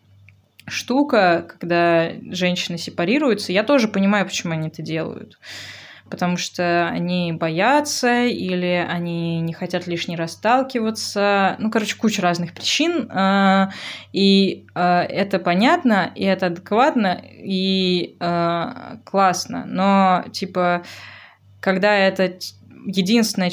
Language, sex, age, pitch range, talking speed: Russian, female, 20-39, 175-205 Hz, 100 wpm